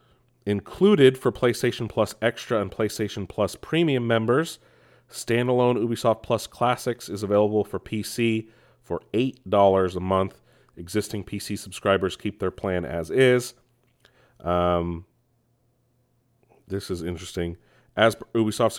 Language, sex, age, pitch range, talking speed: English, male, 30-49, 95-120 Hz, 120 wpm